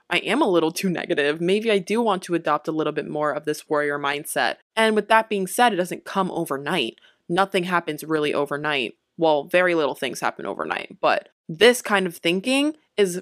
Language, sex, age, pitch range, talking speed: English, female, 20-39, 155-190 Hz, 205 wpm